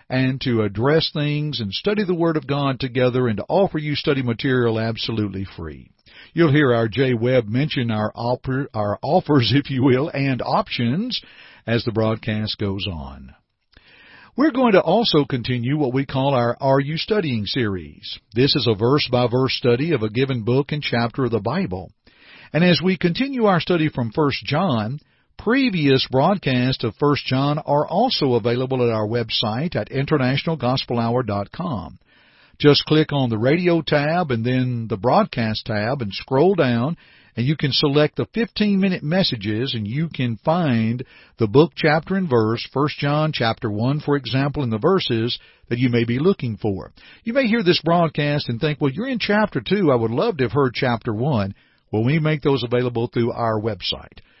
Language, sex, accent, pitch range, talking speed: English, male, American, 115-155 Hz, 175 wpm